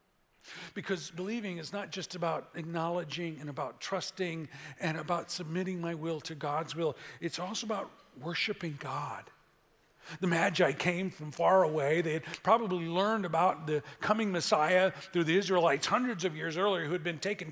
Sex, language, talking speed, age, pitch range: male, English, 165 wpm, 40-59, 160-210 Hz